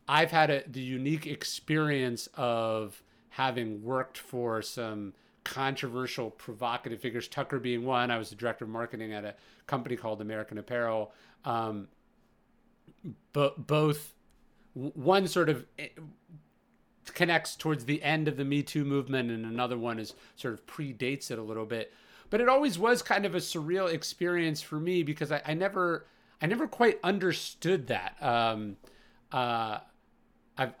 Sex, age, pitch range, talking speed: male, 30-49, 115-155 Hz, 150 wpm